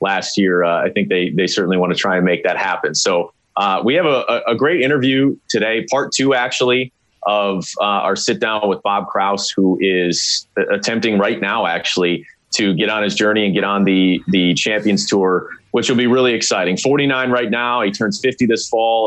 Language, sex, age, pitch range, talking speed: English, male, 30-49, 100-120 Hz, 210 wpm